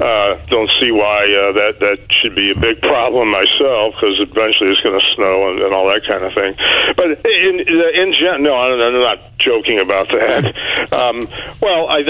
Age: 50-69